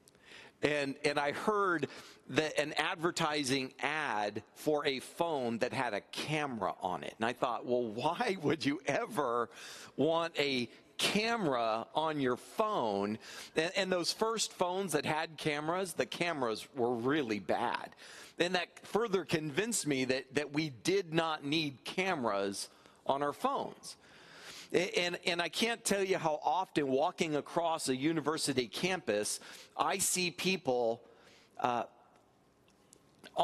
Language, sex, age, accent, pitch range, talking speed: English, male, 40-59, American, 135-175 Hz, 135 wpm